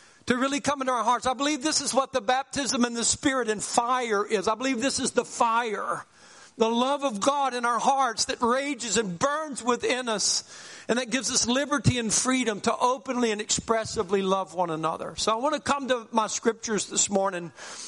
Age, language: 60-79, English